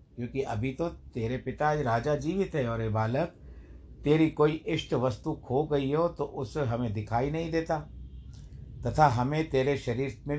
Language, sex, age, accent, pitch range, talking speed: Hindi, male, 60-79, native, 105-135 Hz, 175 wpm